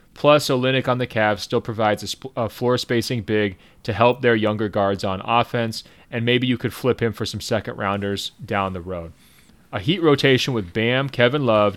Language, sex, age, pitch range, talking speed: English, male, 30-49, 105-125 Hz, 200 wpm